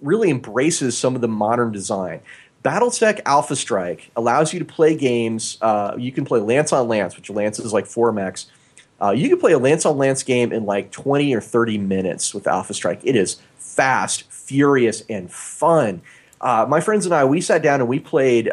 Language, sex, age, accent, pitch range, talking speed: English, male, 30-49, American, 115-155 Hz, 190 wpm